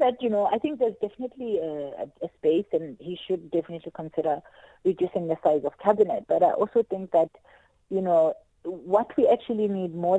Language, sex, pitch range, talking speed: English, female, 165-200 Hz, 190 wpm